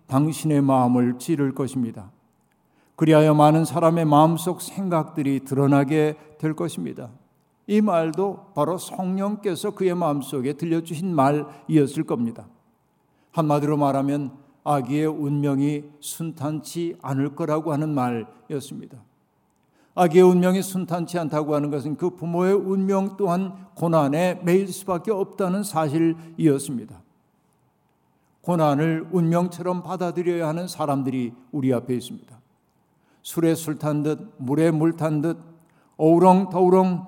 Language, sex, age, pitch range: Korean, male, 50-69, 150-180 Hz